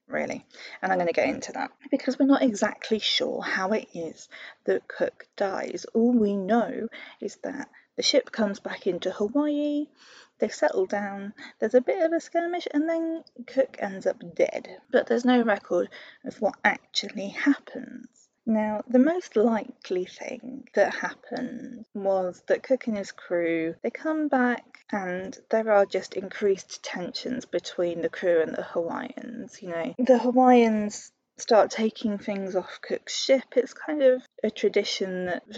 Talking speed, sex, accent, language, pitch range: 165 wpm, female, British, English, 205-275 Hz